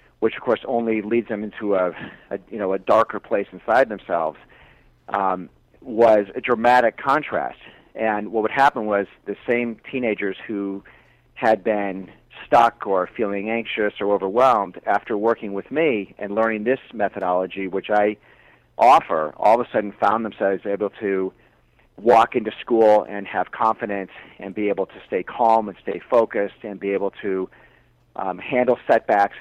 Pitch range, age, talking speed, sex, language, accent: 95-110 Hz, 40-59, 160 wpm, male, English, American